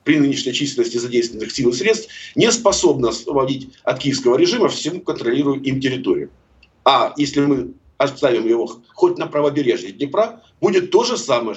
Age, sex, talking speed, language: 50-69, male, 155 wpm, Russian